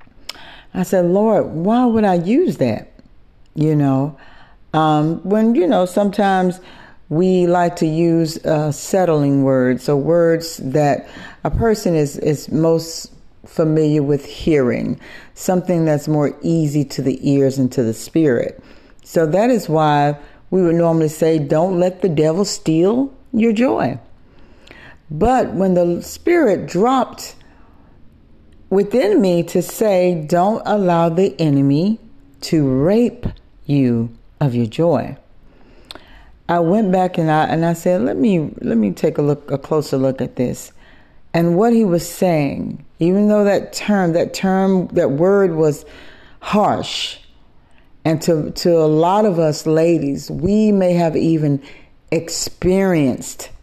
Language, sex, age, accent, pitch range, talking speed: English, female, 60-79, American, 150-185 Hz, 140 wpm